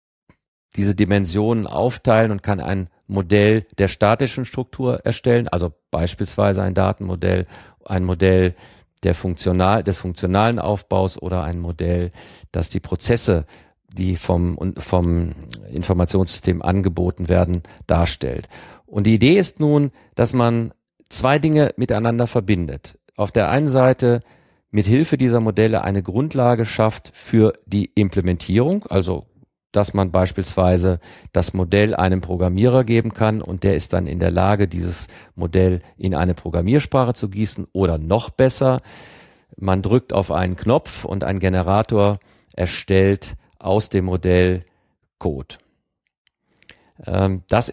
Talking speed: 125 wpm